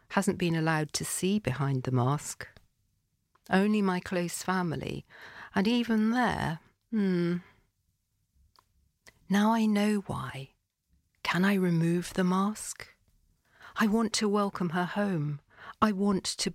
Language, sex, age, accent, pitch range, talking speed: English, female, 50-69, British, 150-195 Hz, 125 wpm